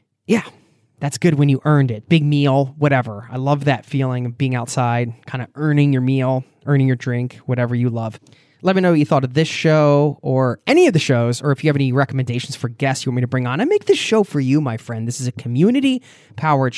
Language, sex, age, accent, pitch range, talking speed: English, male, 20-39, American, 125-155 Hz, 245 wpm